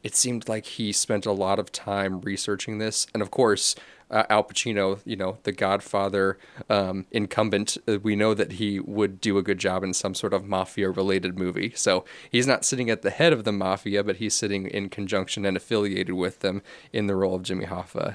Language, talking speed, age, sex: English, 210 wpm, 30-49, male